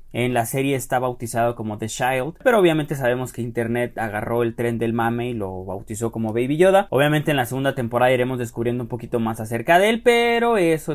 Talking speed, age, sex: 215 wpm, 30-49, male